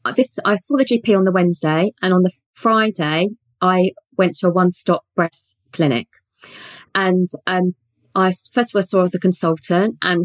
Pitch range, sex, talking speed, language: 170-205 Hz, female, 175 wpm, English